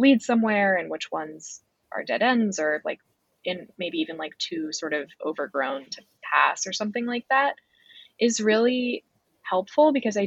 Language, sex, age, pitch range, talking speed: English, female, 10-29, 175-235 Hz, 170 wpm